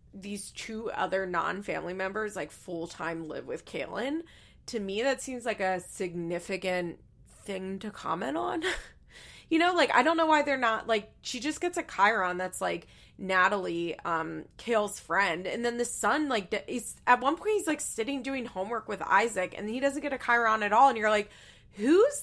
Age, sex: 20-39, female